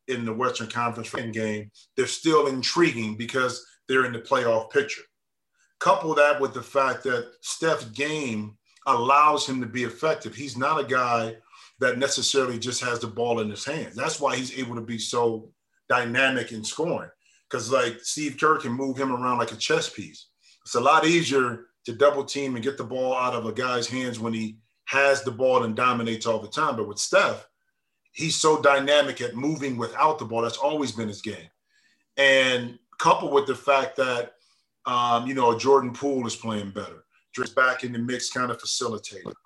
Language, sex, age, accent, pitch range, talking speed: English, male, 40-59, American, 120-140 Hz, 190 wpm